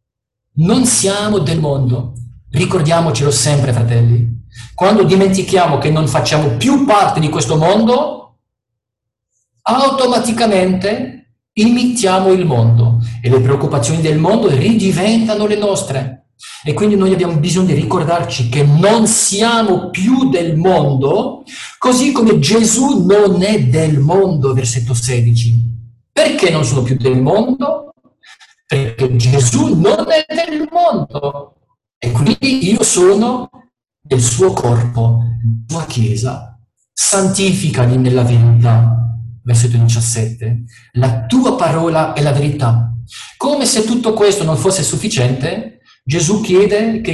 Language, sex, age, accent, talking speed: Italian, male, 50-69, native, 120 wpm